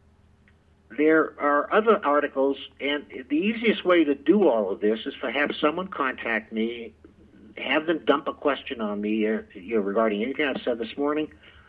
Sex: male